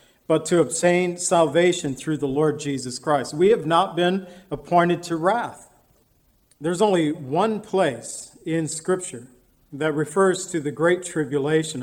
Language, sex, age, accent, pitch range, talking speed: English, male, 50-69, American, 150-180 Hz, 140 wpm